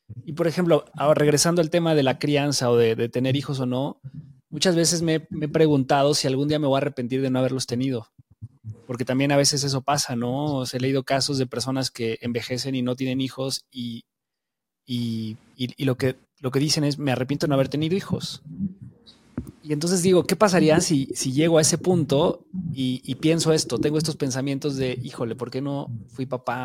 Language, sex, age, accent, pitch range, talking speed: Spanish, male, 20-39, Mexican, 130-170 Hz, 205 wpm